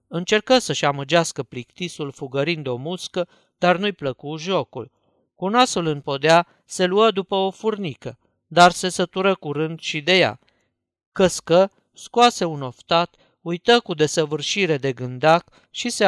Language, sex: Romanian, male